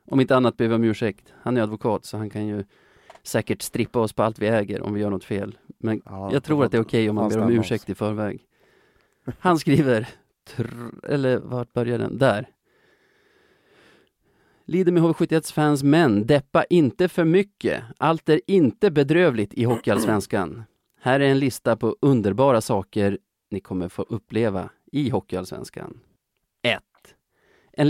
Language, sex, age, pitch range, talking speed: Swedish, male, 30-49, 110-145 Hz, 170 wpm